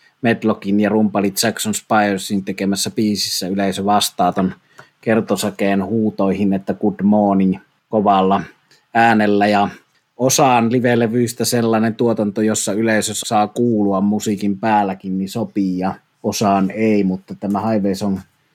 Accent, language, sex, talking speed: native, Finnish, male, 115 wpm